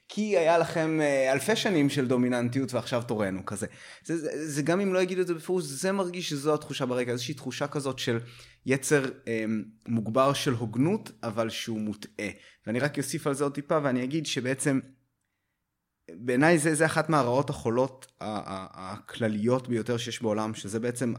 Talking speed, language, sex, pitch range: 175 wpm, Hebrew, male, 115-155 Hz